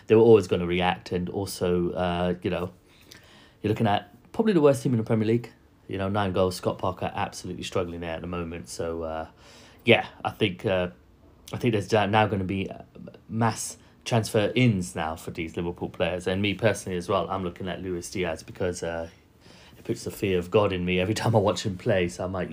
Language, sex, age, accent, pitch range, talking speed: English, male, 30-49, British, 90-110 Hz, 220 wpm